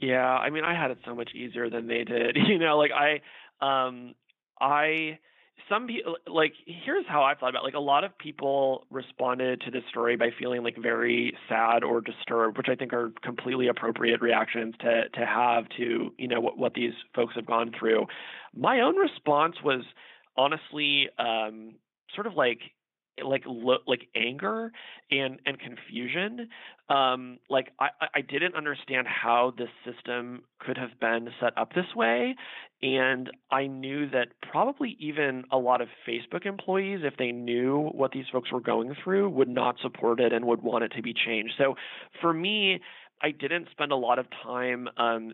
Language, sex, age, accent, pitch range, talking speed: English, male, 30-49, American, 120-140 Hz, 180 wpm